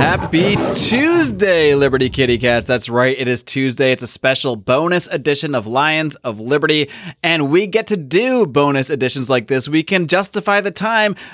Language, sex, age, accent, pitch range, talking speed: English, male, 30-49, American, 135-195 Hz, 175 wpm